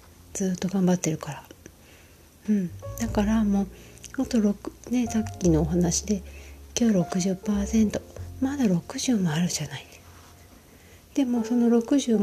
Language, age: Japanese, 40-59